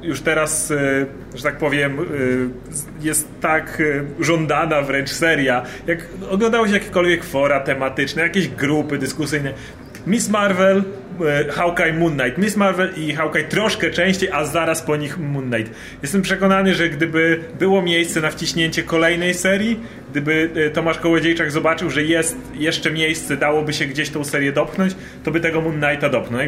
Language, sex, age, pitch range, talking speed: Polish, male, 30-49, 145-170 Hz, 145 wpm